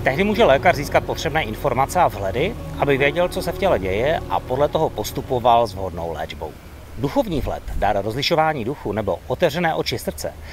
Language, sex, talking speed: Czech, male, 175 wpm